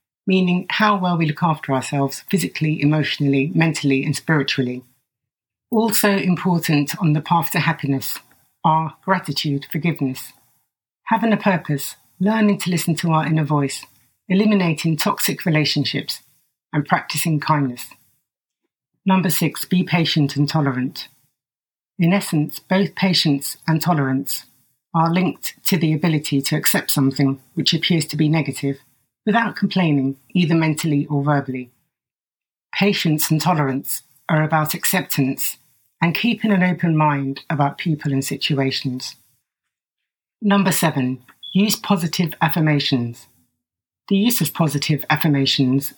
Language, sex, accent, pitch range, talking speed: English, female, British, 140-175 Hz, 125 wpm